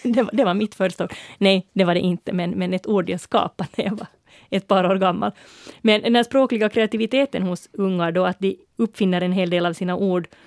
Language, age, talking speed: Swedish, 30-49, 235 wpm